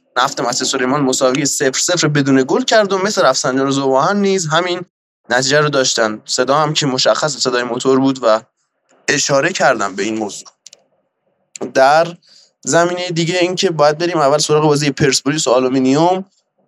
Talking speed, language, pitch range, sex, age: 150 wpm, Persian, 130-170 Hz, male, 20-39